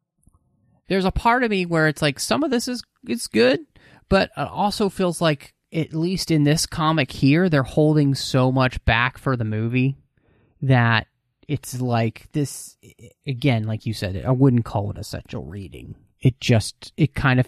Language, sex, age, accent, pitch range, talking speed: English, male, 30-49, American, 115-155 Hz, 180 wpm